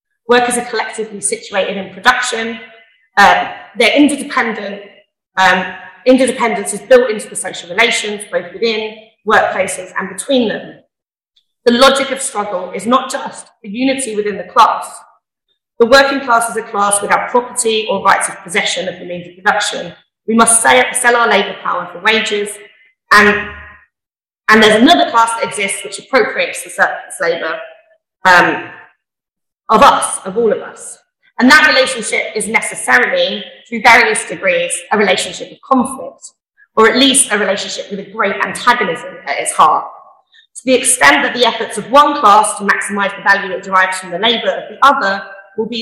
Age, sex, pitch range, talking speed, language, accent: 30-49, female, 200-260 Hz, 165 wpm, English, British